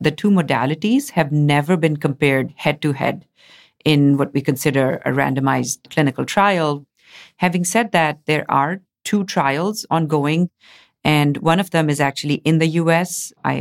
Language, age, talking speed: English, 50-69, 150 wpm